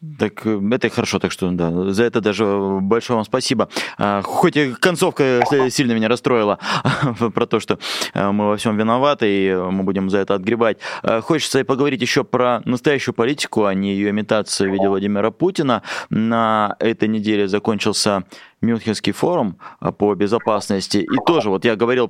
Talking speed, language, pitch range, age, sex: 165 wpm, Russian, 105-125 Hz, 20-39, male